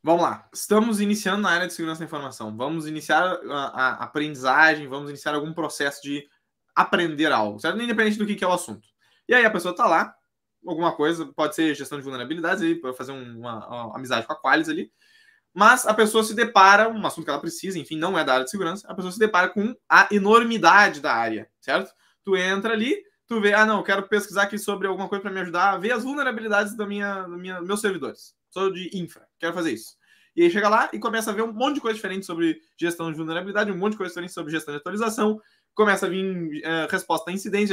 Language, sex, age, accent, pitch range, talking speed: Portuguese, male, 20-39, Brazilian, 165-215 Hz, 230 wpm